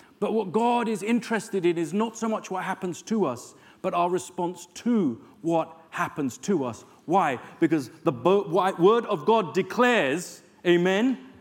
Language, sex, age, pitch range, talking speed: English, male, 40-59, 175-245 Hz, 160 wpm